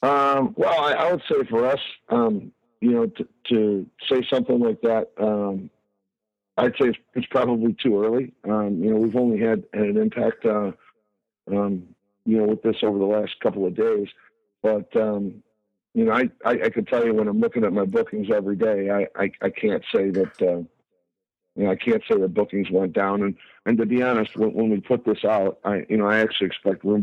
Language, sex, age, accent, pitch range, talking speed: English, male, 50-69, American, 100-120 Hz, 220 wpm